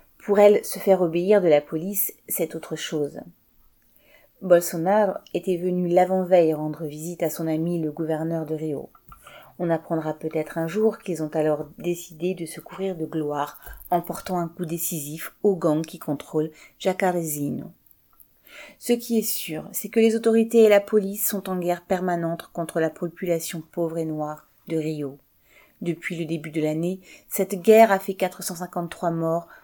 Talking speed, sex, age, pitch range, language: 165 wpm, female, 30-49, 160-190 Hz, French